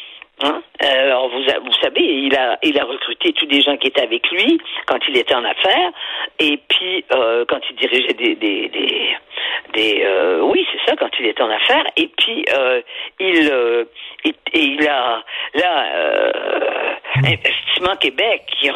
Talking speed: 170 wpm